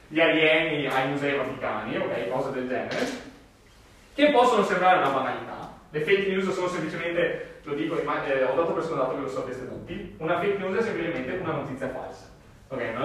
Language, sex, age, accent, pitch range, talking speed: Italian, male, 30-49, native, 145-210 Hz, 190 wpm